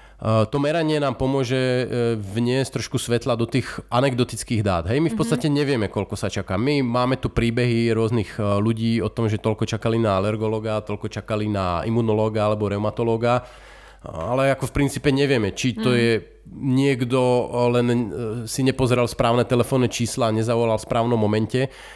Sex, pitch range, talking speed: male, 105-125 Hz, 160 wpm